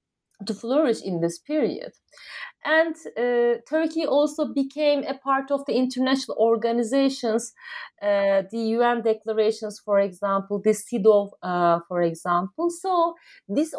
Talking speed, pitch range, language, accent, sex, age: 125 wpm, 230-315 Hz, English, Turkish, female, 30-49